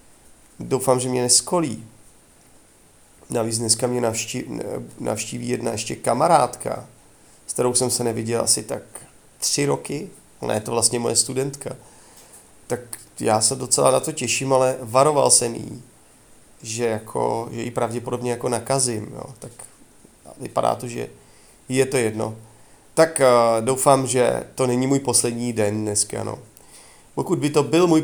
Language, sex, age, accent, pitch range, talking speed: Czech, male, 30-49, native, 115-130 Hz, 140 wpm